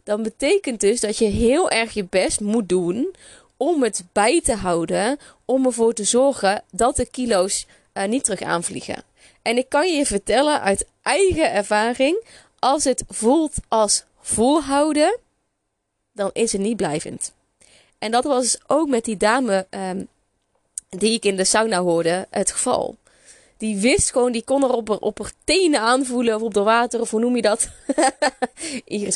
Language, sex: Dutch, female